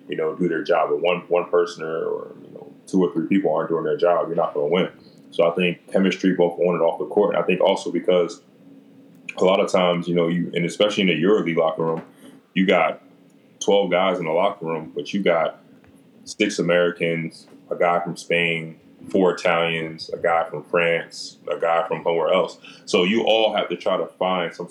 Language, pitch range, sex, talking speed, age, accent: English, 85-105 Hz, male, 220 wpm, 20-39, American